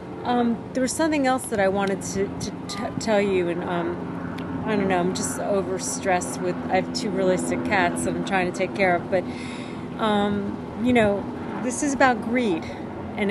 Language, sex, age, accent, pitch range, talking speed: English, female, 40-59, American, 190-230 Hz, 200 wpm